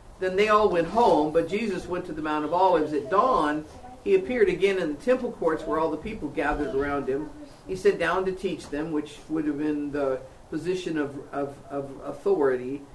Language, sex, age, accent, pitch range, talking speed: English, female, 50-69, American, 145-185 Hz, 205 wpm